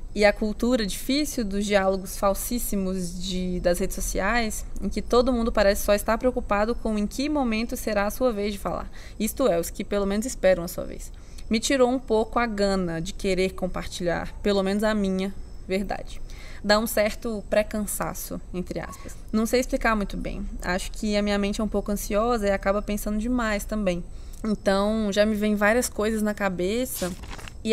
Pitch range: 200-235 Hz